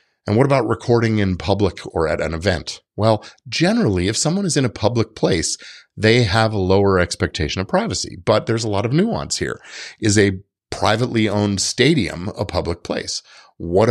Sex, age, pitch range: male, 50-69, 85-120 Hz